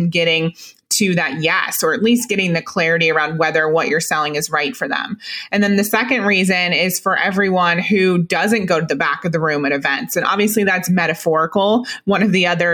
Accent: American